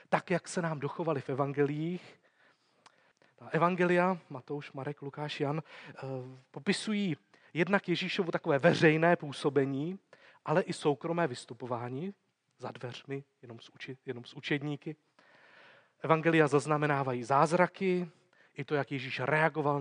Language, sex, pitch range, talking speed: Czech, male, 140-175 Hz, 110 wpm